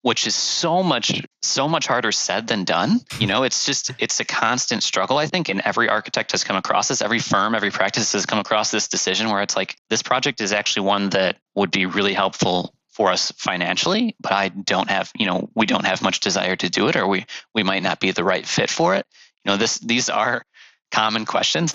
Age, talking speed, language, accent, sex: 20-39, 230 wpm, Polish, American, male